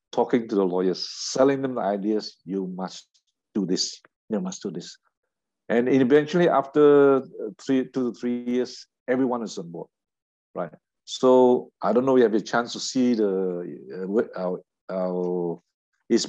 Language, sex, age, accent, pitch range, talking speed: English, male, 60-79, Malaysian, 95-135 Hz, 165 wpm